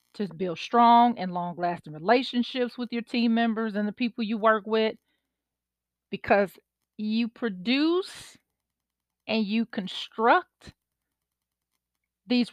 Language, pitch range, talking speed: English, 180-235 Hz, 115 wpm